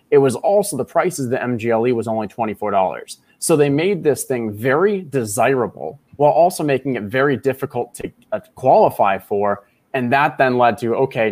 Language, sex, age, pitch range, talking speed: English, male, 20-39, 115-145 Hz, 180 wpm